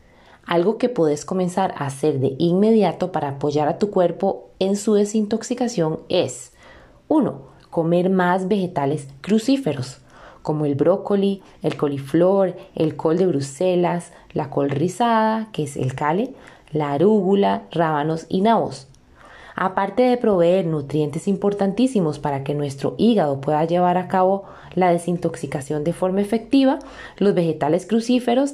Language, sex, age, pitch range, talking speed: Spanish, female, 20-39, 150-210 Hz, 135 wpm